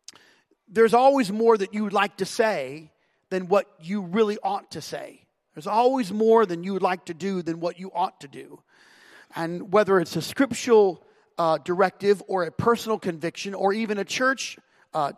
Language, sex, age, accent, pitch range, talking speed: English, male, 40-59, American, 170-215 Hz, 185 wpm